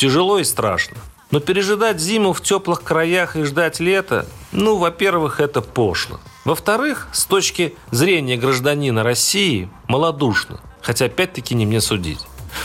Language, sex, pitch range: Russian, male, 115-165 Hz